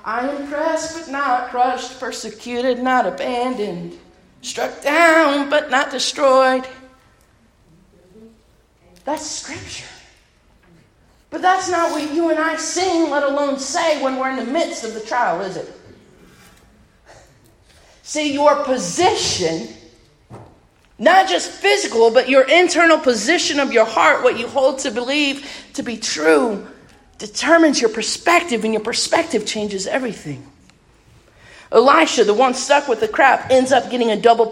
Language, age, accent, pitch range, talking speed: English, 40-59, American, 215-305 Hz, 135 wpm